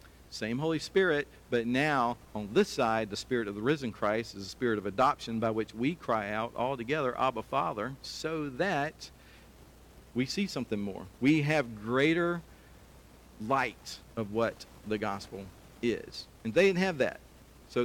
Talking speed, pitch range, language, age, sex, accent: 165 wpm, 100-125 Hz, English, 50-69, male, American